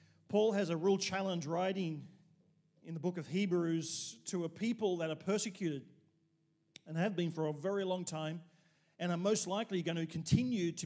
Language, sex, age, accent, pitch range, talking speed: English, male, 40-59, Australian, 160-195 Hz, 180 wpm